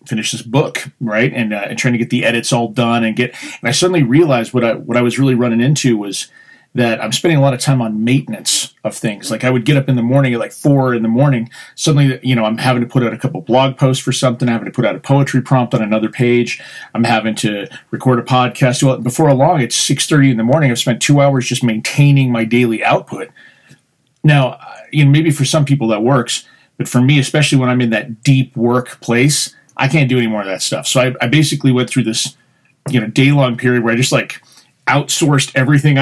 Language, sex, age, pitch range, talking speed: English, male, 30-49, 115-135 Hz, 250 wpm